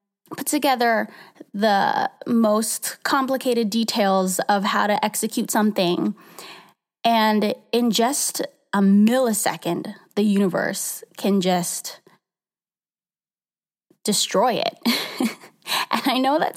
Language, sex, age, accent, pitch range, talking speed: English, female, 20-39, American, 195-250 Hz, 95 wpm